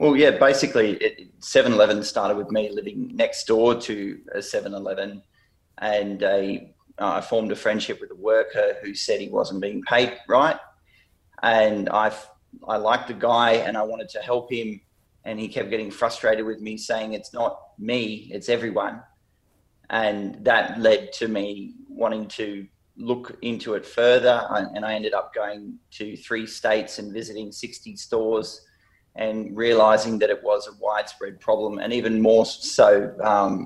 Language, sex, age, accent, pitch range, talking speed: English, male, 30-49, Australian, 105-120 Hz, 165 wpm